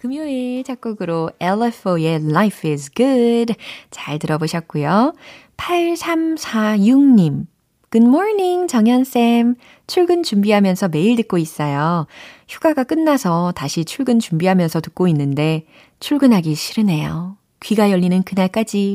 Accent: native